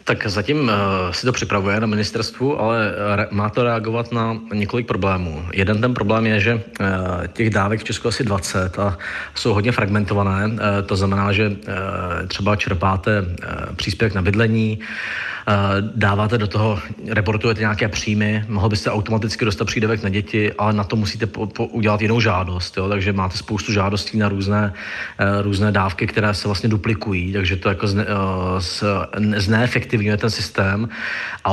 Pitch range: 100-115 Hz